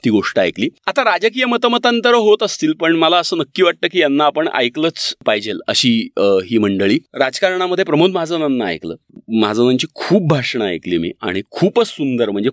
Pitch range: 120-170 Hz